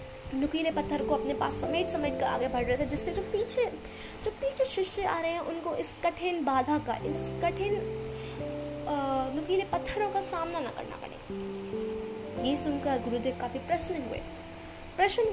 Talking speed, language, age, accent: 165 wpm, Hindi, 20-39, native